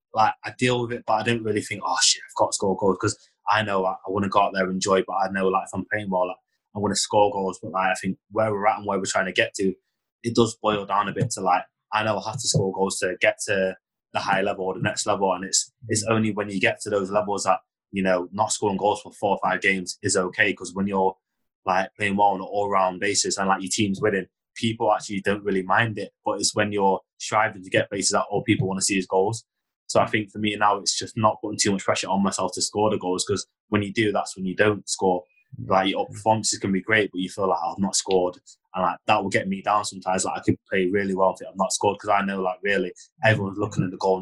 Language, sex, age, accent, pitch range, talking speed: English, male, 20-39, British, 95-105 Hz, 290 wpm